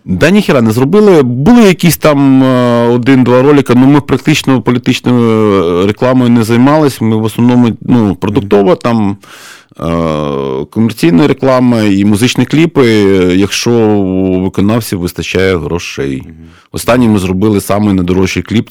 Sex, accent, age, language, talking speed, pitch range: male, native, 30-49, Ukrainian, 120 wpm, 90-120 Hz